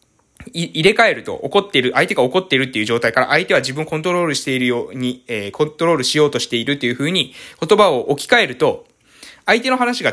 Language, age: Japanese, 20-39